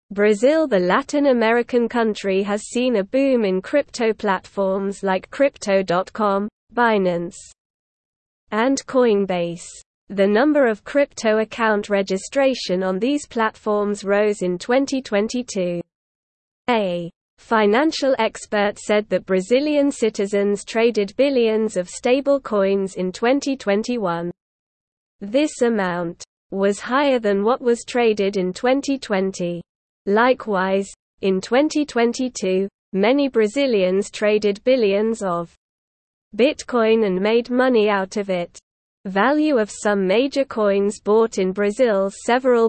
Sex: female